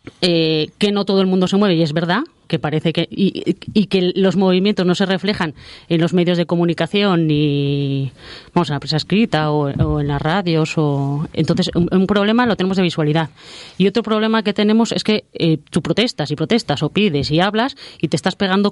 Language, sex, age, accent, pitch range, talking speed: Spanish, female, 20-39, Spanish, 155-190 Hz, 210 wpm